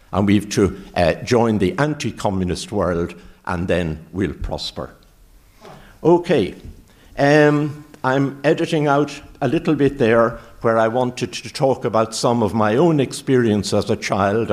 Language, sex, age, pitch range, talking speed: English, male, 60-79, 100-140 Hz, 150 wpm